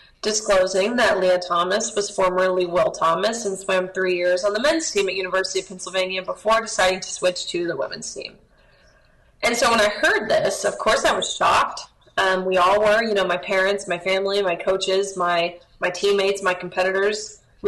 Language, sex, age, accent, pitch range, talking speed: English, female, 20-39, American, 190-215 Hz, 195 wpm